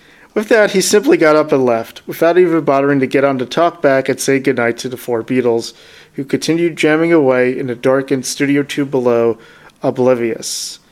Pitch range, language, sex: 125-150 Hz, English, male